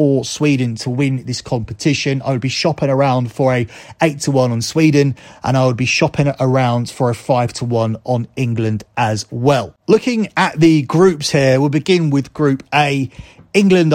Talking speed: 190 wpm